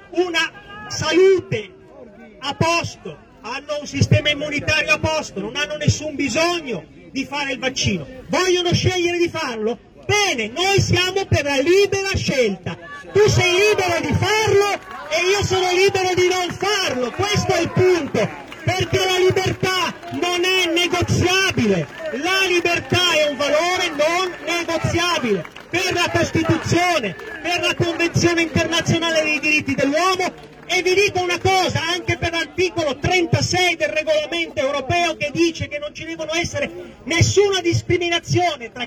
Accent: native